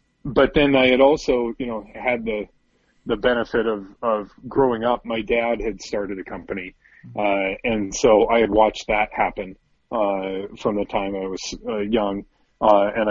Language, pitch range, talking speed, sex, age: English, 100-120 Hz, 180 wpm, male, 40-59